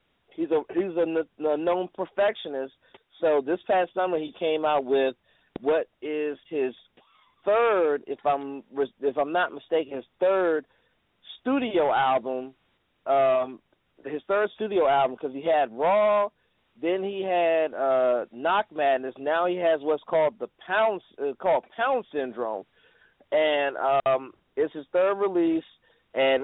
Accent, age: American, 40-59